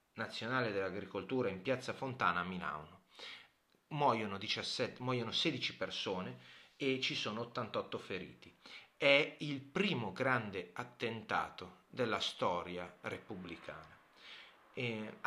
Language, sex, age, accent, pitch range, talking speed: Italian, male, 30-49, native, 115-140 Hz, 100 wpm